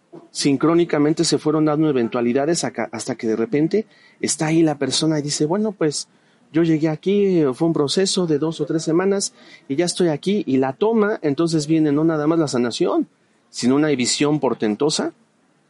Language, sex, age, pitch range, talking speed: Spanish, male, 40-59, 120-160 Hz, 175 wpm